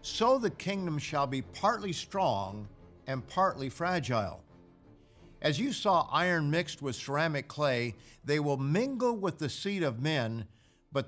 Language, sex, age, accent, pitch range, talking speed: English, male, 50-69, American, 125-175 Hz, 145 wpm